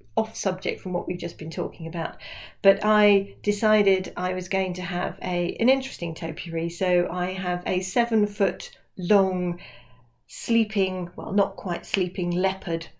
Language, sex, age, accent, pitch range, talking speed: English, female, 40-59, British, 165-210 Hz, 155 wpm